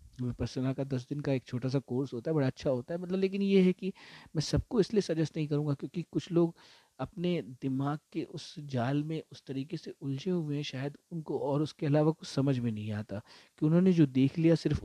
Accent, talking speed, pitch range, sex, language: native, 235 wpm, 130-170 Hz, male, Hindi